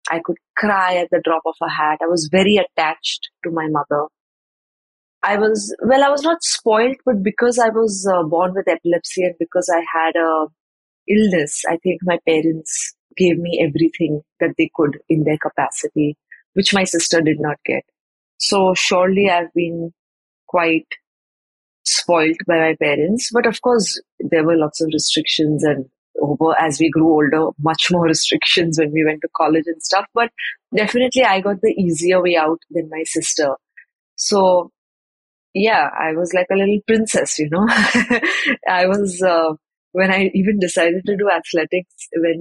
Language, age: English, 30-49